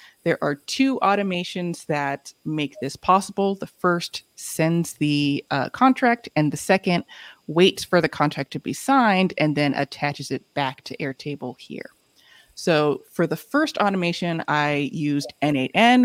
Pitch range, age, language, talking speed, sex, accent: 140-180 Hz, 20-39, English, 150 wpm, female, American